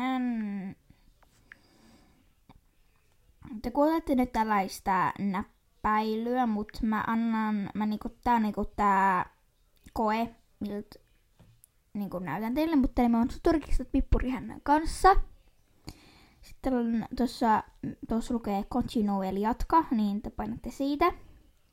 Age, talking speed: 20-39, 105 wpm